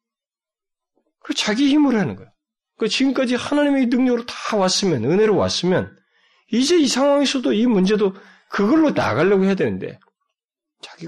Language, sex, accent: Korean, male, native